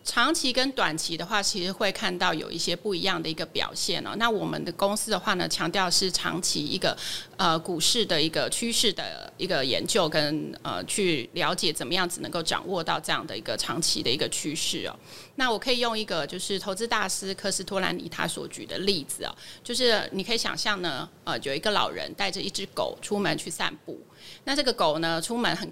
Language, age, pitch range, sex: Chinese, 30-49, 180-225 Hz, female